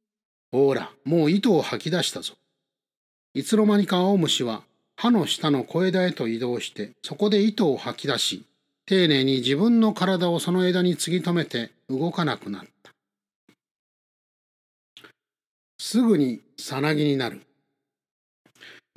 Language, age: Japanese, 40-59